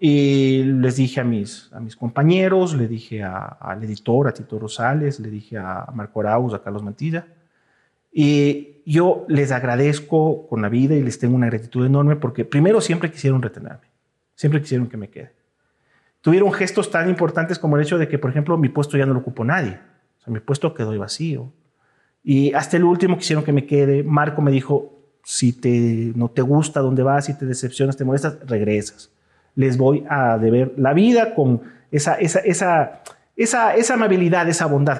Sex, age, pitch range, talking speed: male, 40-59, 130-185 Hz, 190 wpm